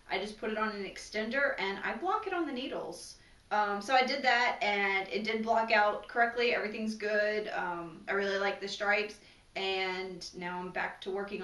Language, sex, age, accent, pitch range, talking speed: English, female, 20-39, American, 190-240 Hz, 205 wpm